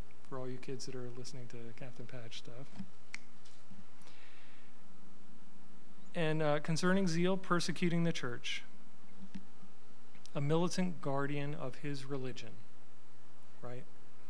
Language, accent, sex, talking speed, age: English, American, male, 105 wpm, 40-59